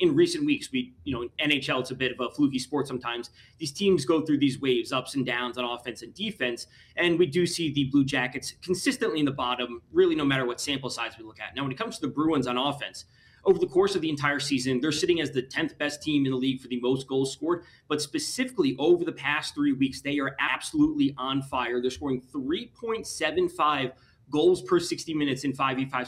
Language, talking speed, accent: English, 230 wpm, American